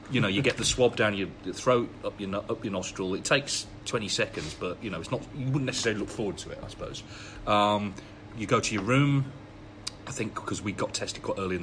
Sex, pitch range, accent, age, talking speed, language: male, 100-120 Hz, British, 30-49, 245 wpm, English